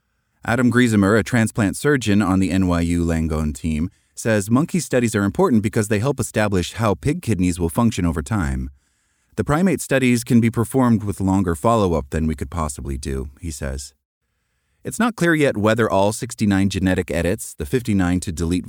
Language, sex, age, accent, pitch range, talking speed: English, male, 30-49, American, 80-110 Hz, 175 wpm